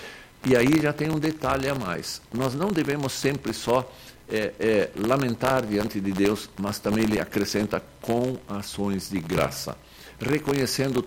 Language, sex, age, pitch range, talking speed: Portuguese, male, 60-79, 115-165 Hz, 140 wpm